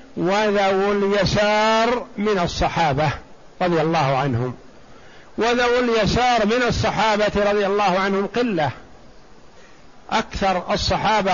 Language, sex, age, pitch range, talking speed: Arabic, male, 50-69, 185-225 Hz, 90 wpm